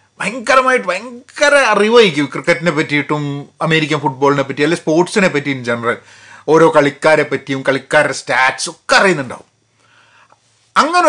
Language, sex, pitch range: Malayalam, male, 150-235 Hz